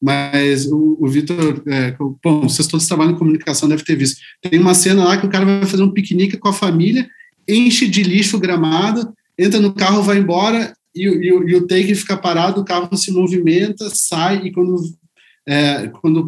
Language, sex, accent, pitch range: Portuguese, male, Brazilian, 160-200 Hz